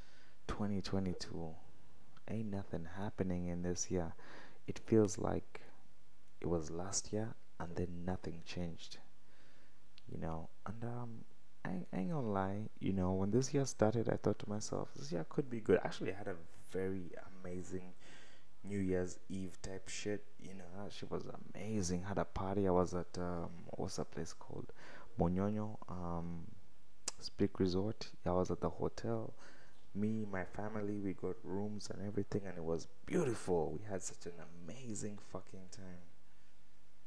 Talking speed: 160 wpm